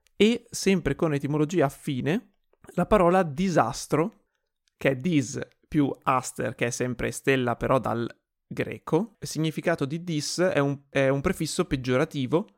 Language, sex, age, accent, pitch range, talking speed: Italian, male, 30-49, native, 130-165 Hz, 145 wpm